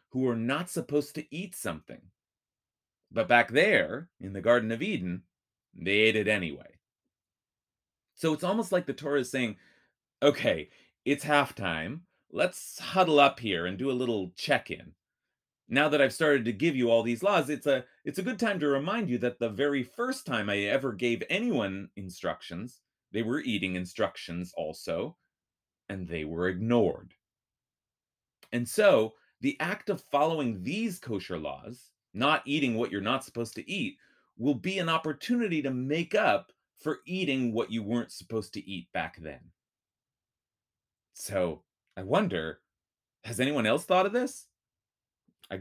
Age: 30-49